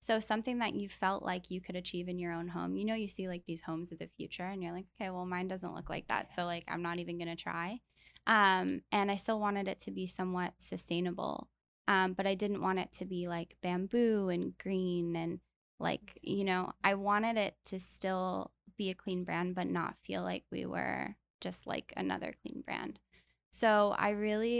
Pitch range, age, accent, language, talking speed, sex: 180-205 Hz, 10-29, American, English, 220 wpm, female